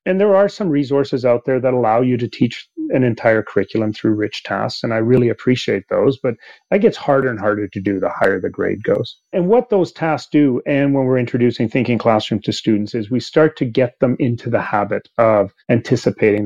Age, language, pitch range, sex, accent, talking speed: 30-49, English, 110-140 Hz, male, Canadian, 220 wpm